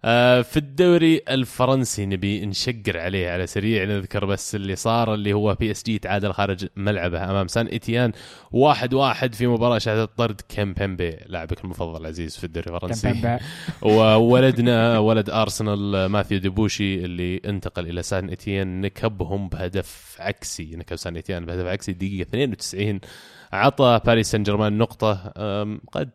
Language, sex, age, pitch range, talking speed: Arabic, male, 20-39, 95-115 Hz, 145 wpm